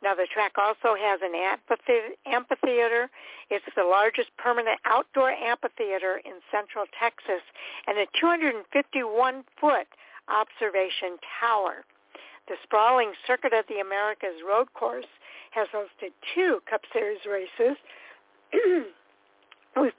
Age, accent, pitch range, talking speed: 60-79, American, 205-270 Hz, 110 wpm